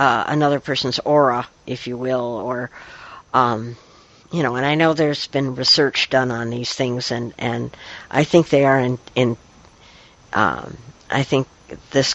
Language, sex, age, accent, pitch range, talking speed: English, female, 60-79, American, 125-160 Hz, 165 wpm